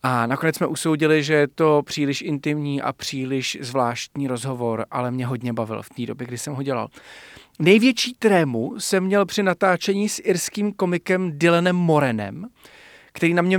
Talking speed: 170 wpm